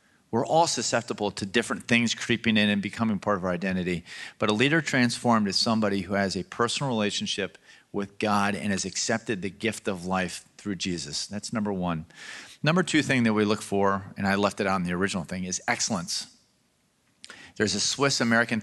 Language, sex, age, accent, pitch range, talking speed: English, male, 40-59, American, 100-125 Hz, 195 wpm